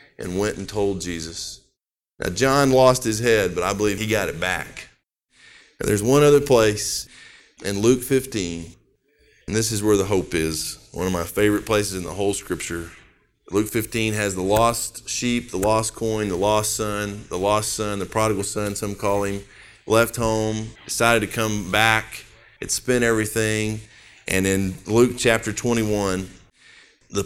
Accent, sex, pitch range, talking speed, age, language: American, male, 100-120 Hz, 170 wpm, 40-59, English